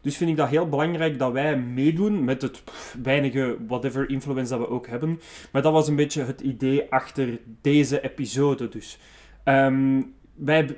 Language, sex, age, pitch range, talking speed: Dutch, male, 20-39, 130-155 Hz, 165 wpm